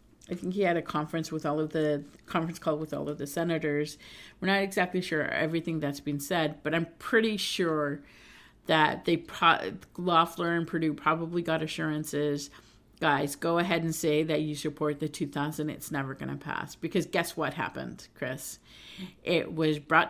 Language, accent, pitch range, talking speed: English, American, 150-175 Hz, 175 wpm